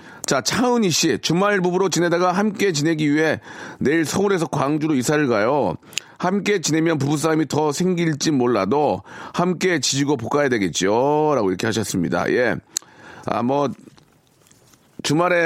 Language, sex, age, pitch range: Korean, male, 40-59, 115-160 Hz